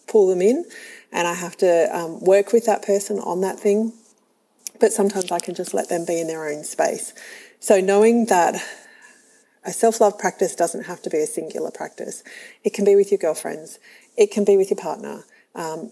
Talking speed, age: 200 wpm, 40-59